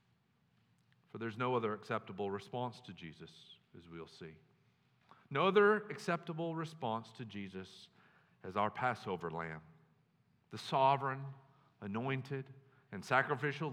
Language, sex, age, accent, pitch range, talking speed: English, male, 40-59, American, 115-170 Hz, 115 wpm